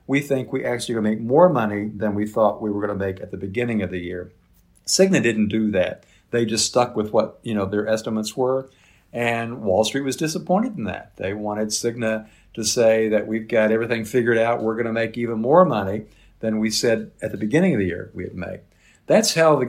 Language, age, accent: English, 50-69, American